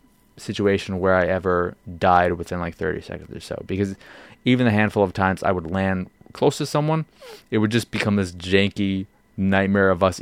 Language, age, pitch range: English, 20-39, 90-110 Hz